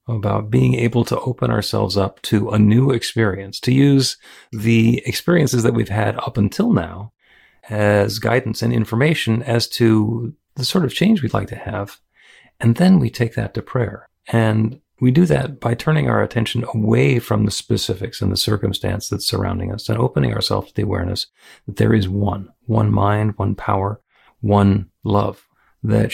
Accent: American